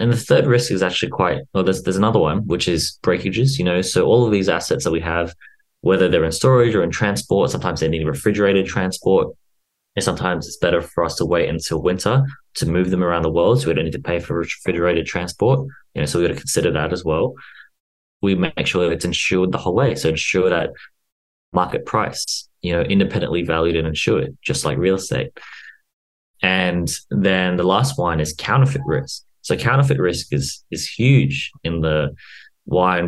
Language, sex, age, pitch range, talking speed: English, male, 20-39, 85-115 Hz, 205 wpm